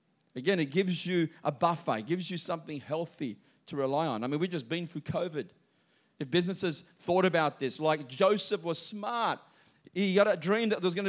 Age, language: 40-59, English